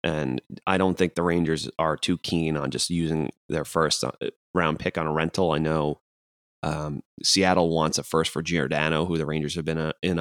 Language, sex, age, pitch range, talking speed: English, male, 30-49, 75-90 Hz, 205 wpm